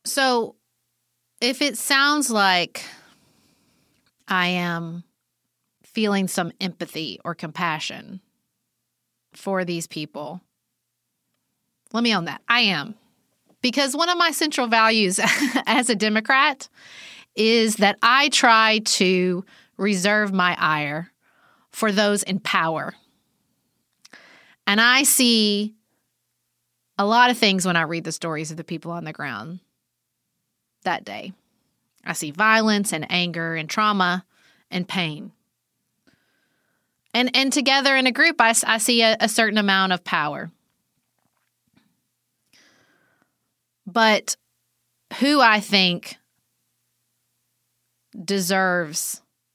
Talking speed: 110 wpm